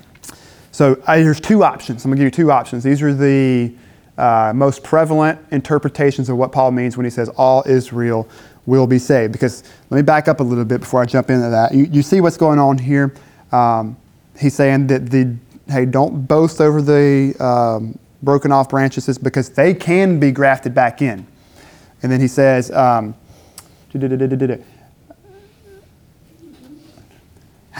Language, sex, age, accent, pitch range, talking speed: English, male, 20-39, American, 125-150 Hz, 165 wpm